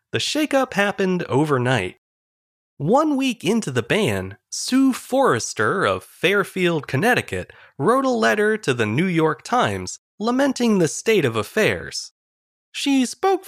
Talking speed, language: 130 wpm, English